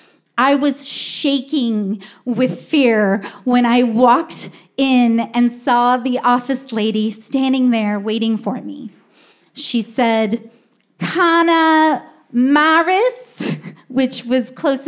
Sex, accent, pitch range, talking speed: female, American, 230-290 Hz, 105 wpm